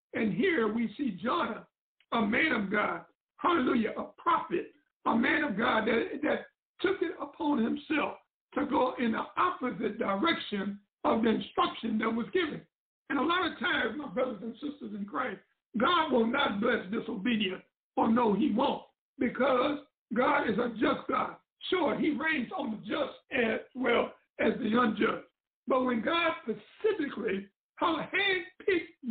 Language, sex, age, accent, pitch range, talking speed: English, male, 60-79, American, 230-320 Hz, 155 wpm